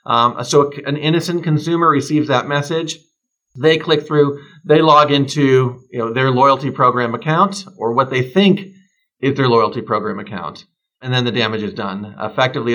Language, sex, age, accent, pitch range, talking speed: English, male, 40-59, American, 120-155 Hz, 160 wpm